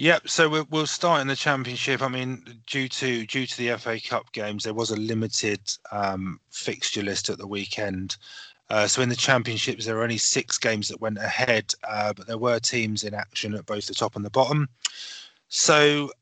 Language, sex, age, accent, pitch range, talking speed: English, male, 30-49, British, 110-135 Hz, 205 wpm